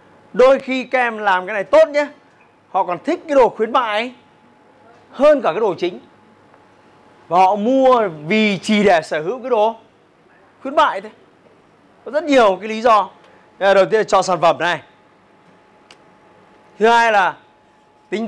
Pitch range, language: 190-235 Hz, Vietnamese